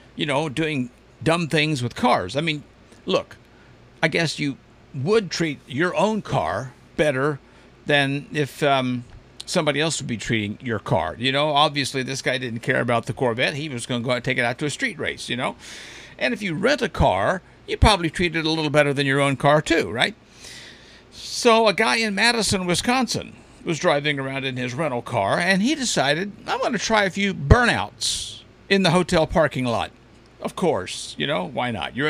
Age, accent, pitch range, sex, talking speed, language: 50-69, American, 130-190 Hz, male, 205 wpm, English